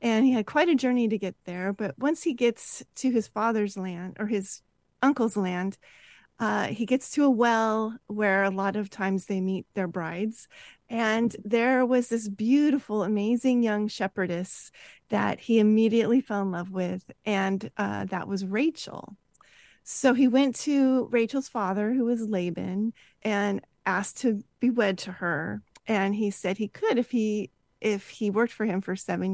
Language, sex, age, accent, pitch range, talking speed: English, female, 30-49, American, 205-255 Hz, 175 wpm